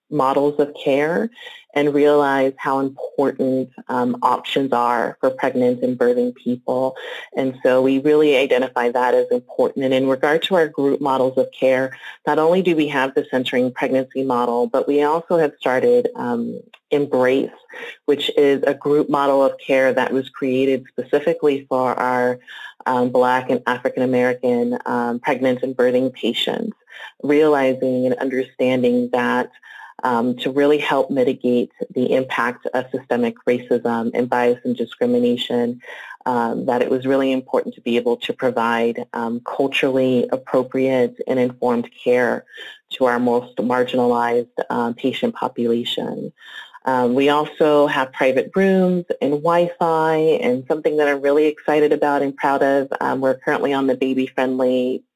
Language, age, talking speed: English, 30-49, 150 wpm